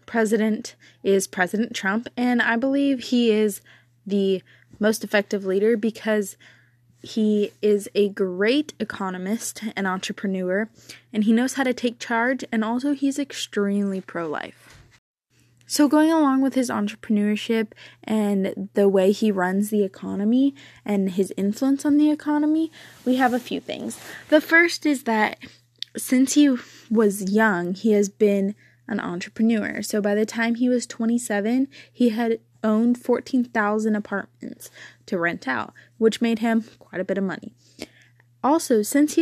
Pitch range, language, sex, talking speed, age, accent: 185-240 Hz, English, female, 145 wpm, 20-39, American